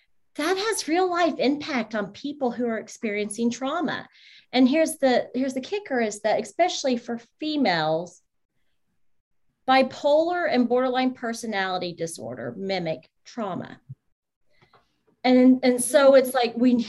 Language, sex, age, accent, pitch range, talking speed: English, female, 40-59, American, 185-245 Hz, 130 wpm